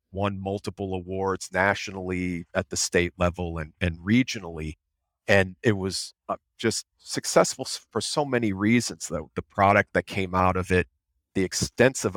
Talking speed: 155 wpm